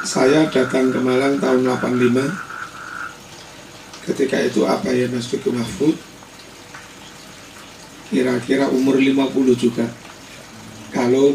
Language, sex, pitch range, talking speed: Indonesian, male, 125-140 Hz, 90 wpm